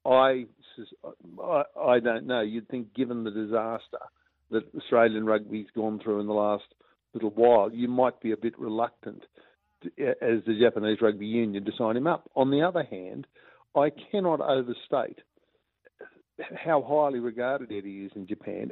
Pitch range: 110-145 Hz